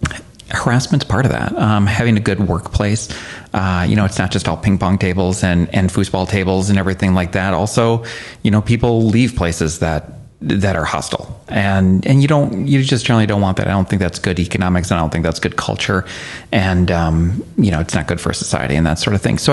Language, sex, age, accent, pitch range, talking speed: English, male, 30-49, American, 95-115 Hz, 230 wpm